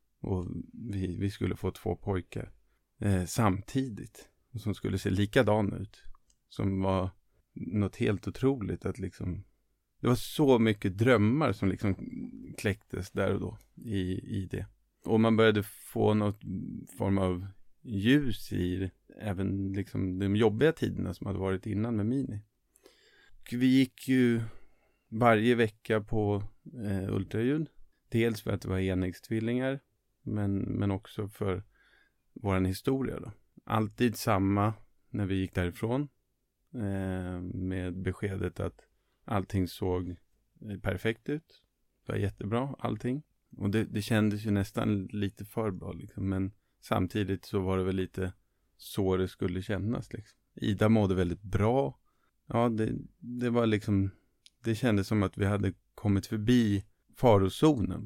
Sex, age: male, 30-49